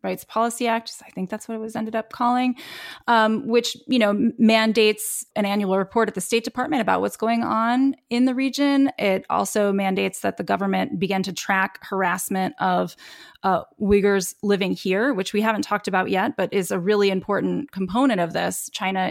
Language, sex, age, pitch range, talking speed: English, female, 20-39, 190-235 Hz, 185 wpm